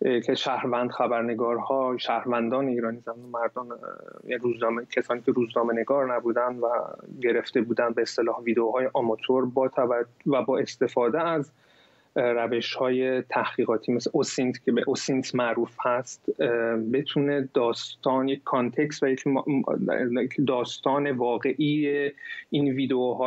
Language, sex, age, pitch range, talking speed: Persian, male, 30-49, 120-135 Hz, 120 wpm